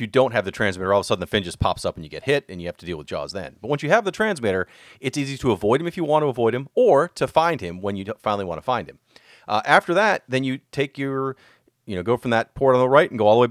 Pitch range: 105-140 Hz